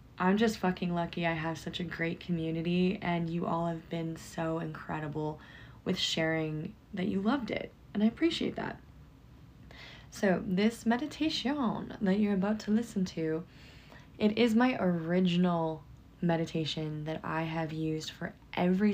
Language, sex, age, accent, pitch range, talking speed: English, female, 20-39, American, 160-190 Hz, 150 wpm